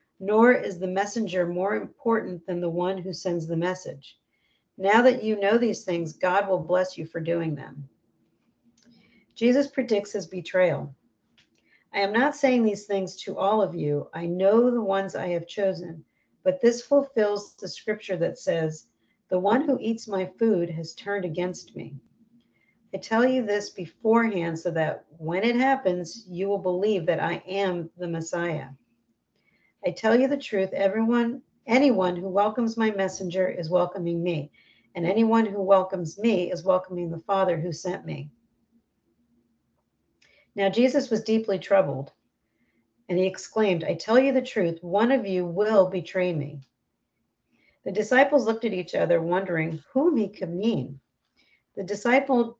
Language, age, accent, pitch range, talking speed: English, 50-69, American, 175-225 Hz, 160 wpm